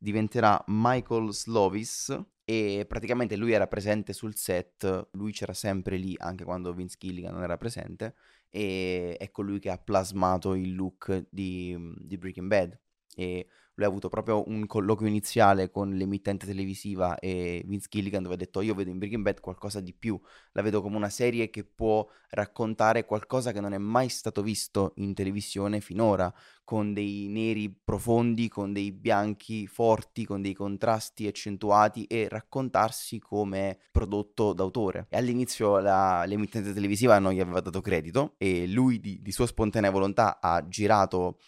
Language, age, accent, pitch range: Italian, 20-39, native, 95-110 Hz